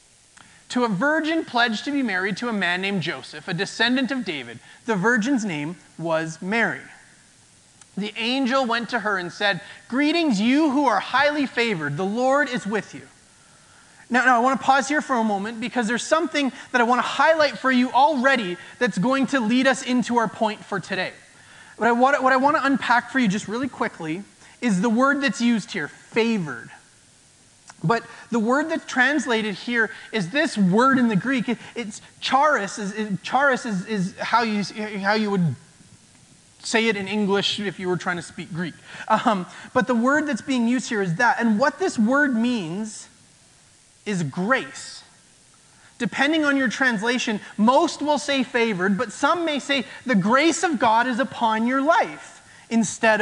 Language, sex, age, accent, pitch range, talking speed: English, male, 30-49, American, 200-265 Hz, 175 wpm